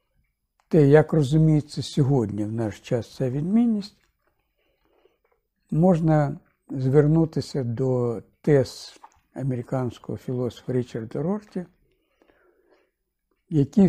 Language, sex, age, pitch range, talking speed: Ukrainian, male, 60-79, 130-180 Hz, 80 wpm